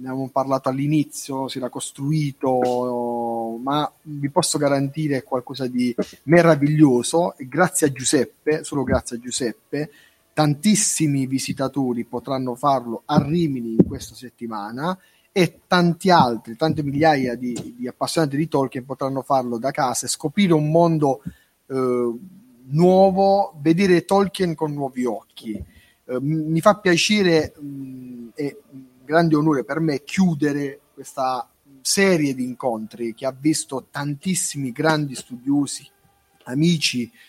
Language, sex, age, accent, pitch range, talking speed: Italian, male, 30-49, native, 125-160 Hz, 120 wpm